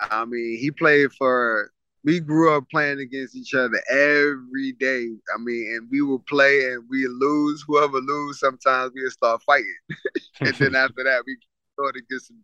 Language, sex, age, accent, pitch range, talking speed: English, male, 20-39, American, 125-155 Hz, 190 wpm